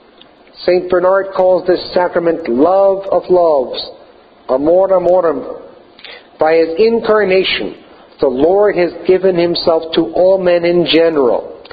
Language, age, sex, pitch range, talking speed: English, 50-69, male, 165-195 Hz, 120 wpm